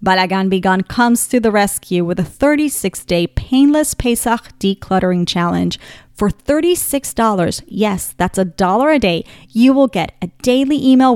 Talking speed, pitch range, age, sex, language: 145 wpm, 180-260 Hz, 40-59, female, English